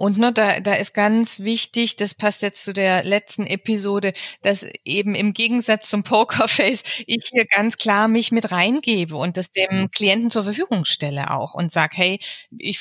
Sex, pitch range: female, 190-230 Hz